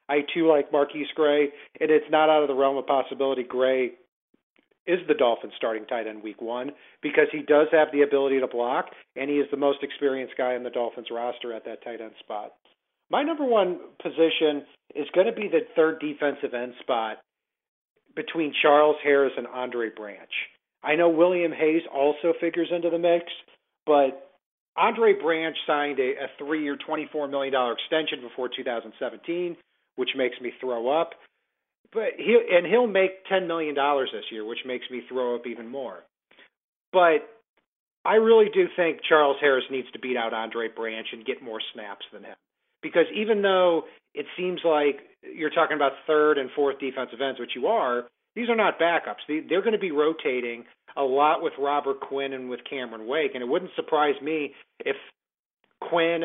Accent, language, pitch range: American, English, 130-170 Hz